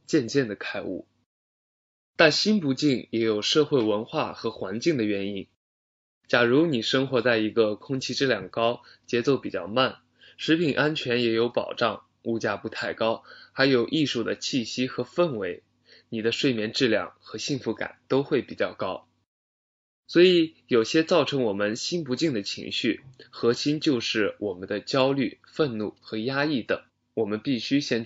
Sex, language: male, Chinese